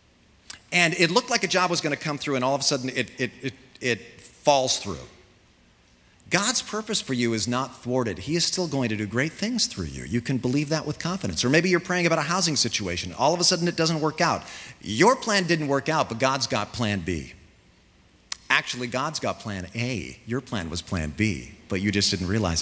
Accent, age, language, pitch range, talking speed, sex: American, 40-59, English, 100-155 Hz, 230 wpm, male